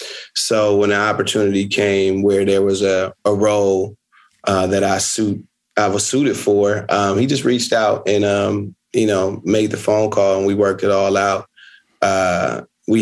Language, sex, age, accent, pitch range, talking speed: English, male, 30-49, American, 95-105 Hz, 185 wpm